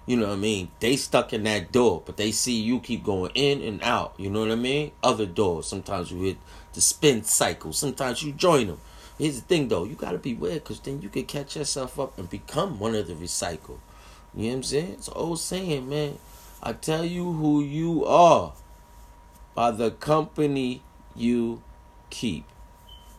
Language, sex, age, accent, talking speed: English, male, 30-49, American, 205 wpm